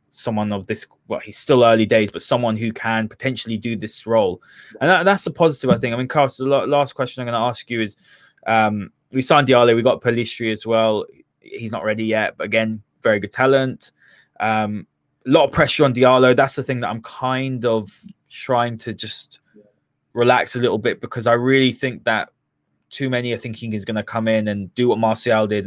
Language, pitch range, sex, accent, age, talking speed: English, 110-130 Hz, male, British, 20-39, 215 wpm